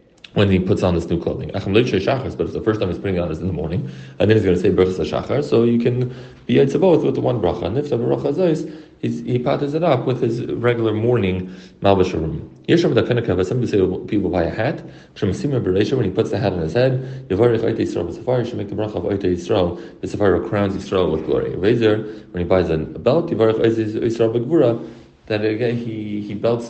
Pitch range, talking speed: 95-130 Hz, 205 wpm